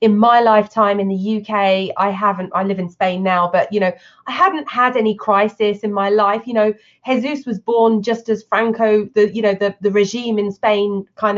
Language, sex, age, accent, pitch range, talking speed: English, female, 30-49, British, 195-230 Hz, 215 wpm